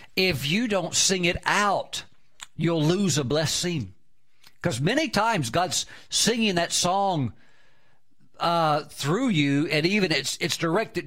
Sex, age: male, 50-69